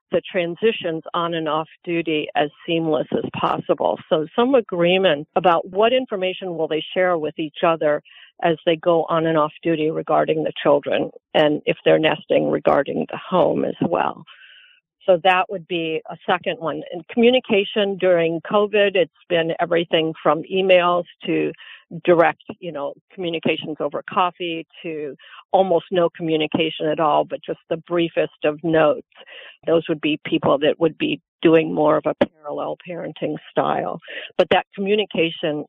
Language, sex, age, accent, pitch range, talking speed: English, female, 50-69, American, 160-200 Hz, 155 wpm